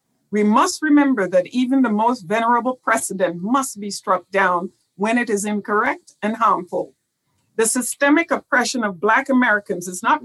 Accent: American